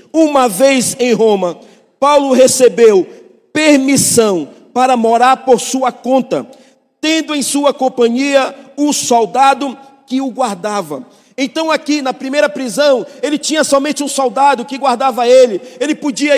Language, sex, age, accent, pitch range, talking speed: Portuguese, male, 50-69, Brazilian, 245-280 Hz, 130 wpm